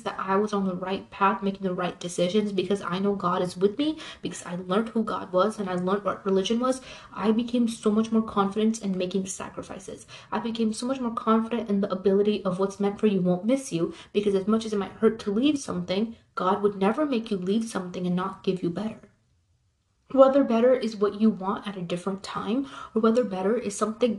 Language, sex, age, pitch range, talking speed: English, female, 30-49, 190-225 Hz, 230 wpm